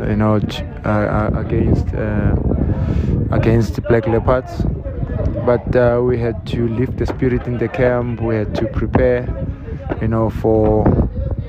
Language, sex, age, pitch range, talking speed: English, male, 20-39, 105-125 Hz, 135 wpm